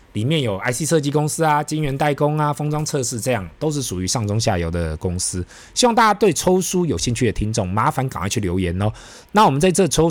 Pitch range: 95-140 Hz